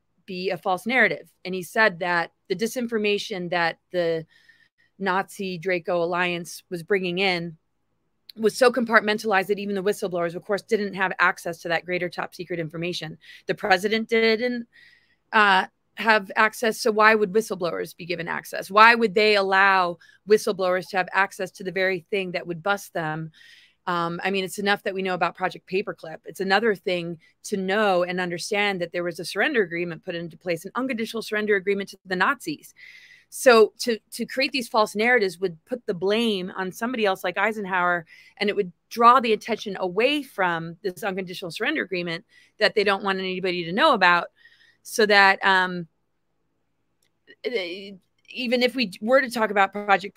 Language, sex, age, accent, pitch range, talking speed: English, female, 30-49, American, 180-220 Hz, 175 wpm